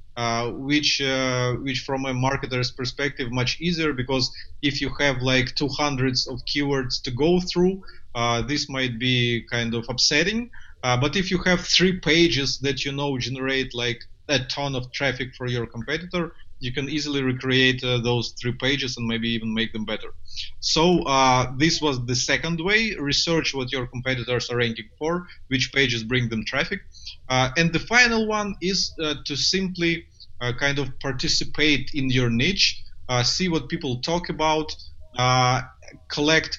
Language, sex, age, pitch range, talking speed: English, male, 20-39, 125-155 Hz, 170 wpm